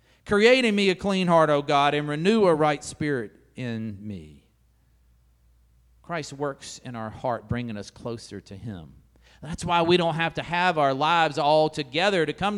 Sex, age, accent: male, 40-59, American